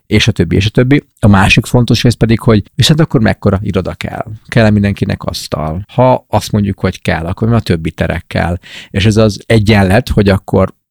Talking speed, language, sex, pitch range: 200 wpm, Hungarian, male, 95-110 Hz